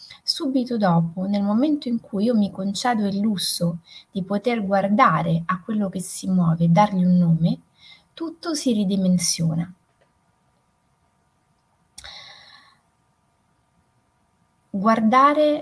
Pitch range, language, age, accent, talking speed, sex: 180-225 Hz, Italian, 20-39, native, 100 wpm, female